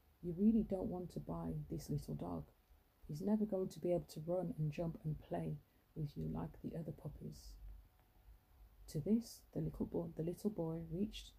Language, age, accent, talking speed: English, 30-49, British, 190 wpm